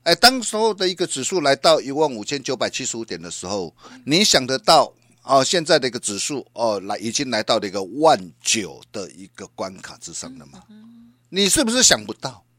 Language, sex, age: Chinese, male, 50-69